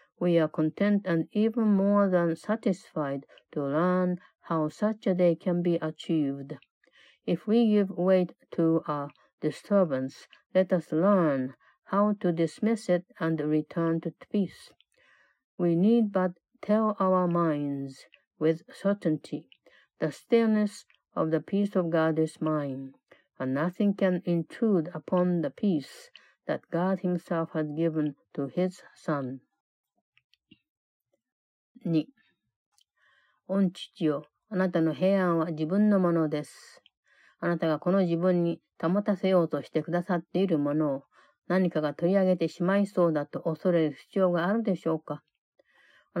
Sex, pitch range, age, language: female, 155-190 Hz, 50-69, Japanese